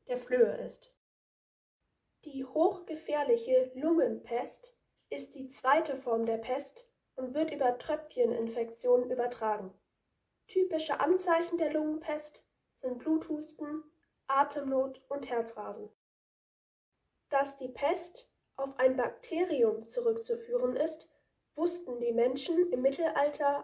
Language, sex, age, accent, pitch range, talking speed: German, female, 10-29, German, 255-335 Hz, 100 wpm